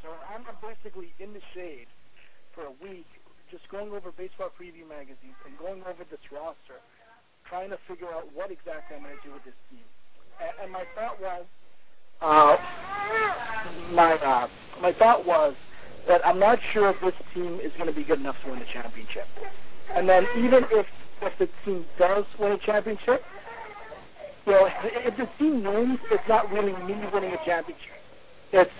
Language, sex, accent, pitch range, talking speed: English, male, American, 175-220 Hz, 175 wpm